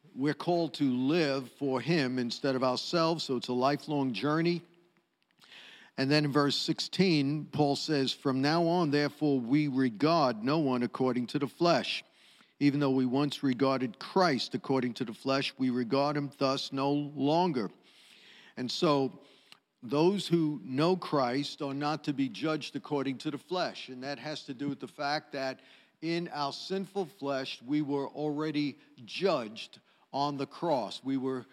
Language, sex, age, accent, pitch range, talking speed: English, male, 50-69, American, 135-155 Hz, 165 wpm